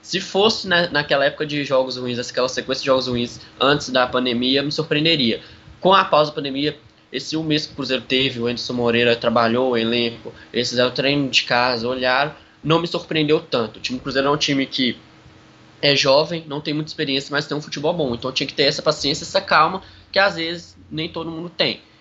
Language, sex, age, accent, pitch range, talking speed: Portuguese, male, 10-29, Brazilian, 125-155 Hz, 215 wpm